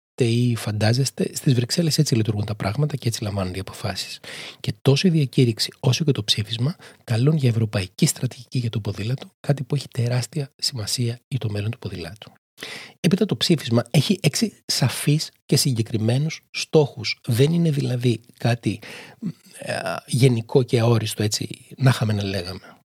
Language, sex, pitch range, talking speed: Greek, male, 115-145 Hz, 155 wpm